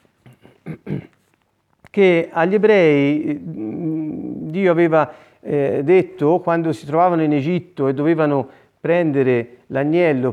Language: Italian